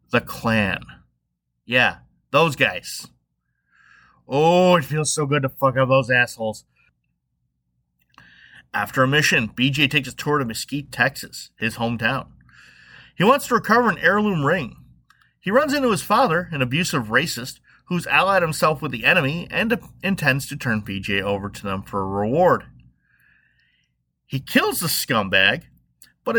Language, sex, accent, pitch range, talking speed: English, male, American, 110-160 Hz, 145 wpm